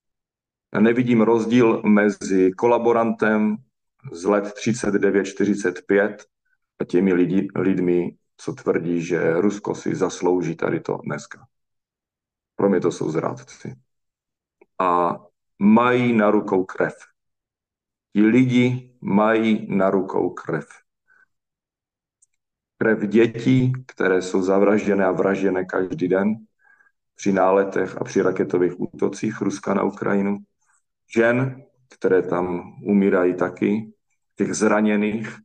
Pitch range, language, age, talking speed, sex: 90-110 Hz, Slovak, 40-59, 105 wpm, male